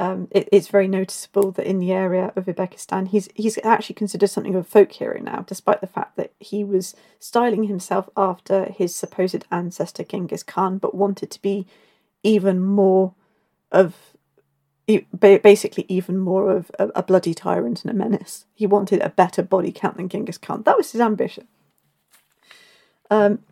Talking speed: 170 wpm